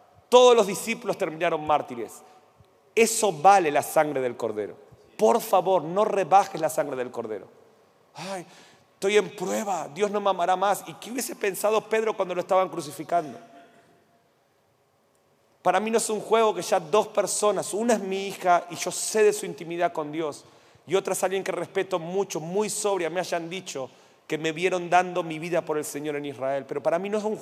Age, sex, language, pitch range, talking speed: 40-59, male, Spanish, 155-200 Hz, 195 wpm